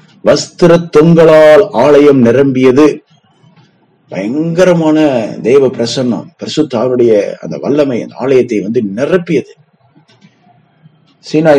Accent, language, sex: native, Tamil, male